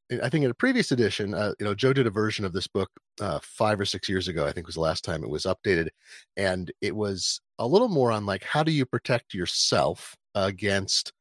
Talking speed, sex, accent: 240 wpm, male, American